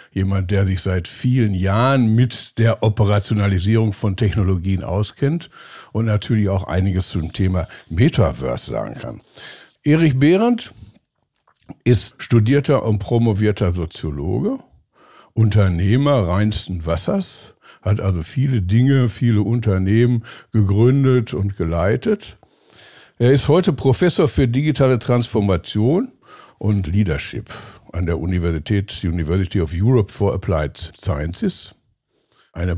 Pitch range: 95-130 Hz